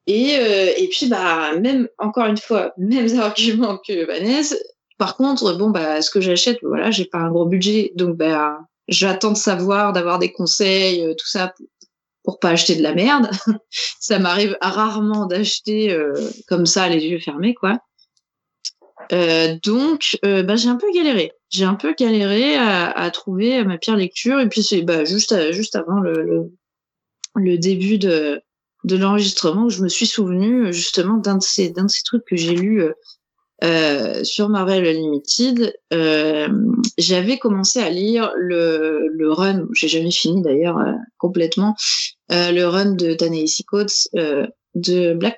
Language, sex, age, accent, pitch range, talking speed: French, female, 20-39, French, 175-225 Hz, 175 wpm